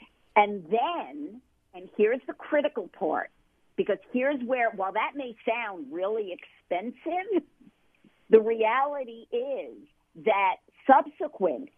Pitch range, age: 195-270 Hz, 50-69